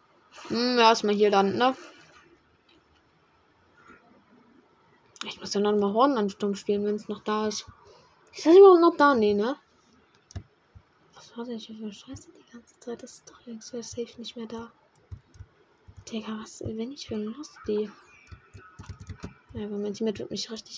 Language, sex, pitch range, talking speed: German, female, 195-230 Hz, 160 wpm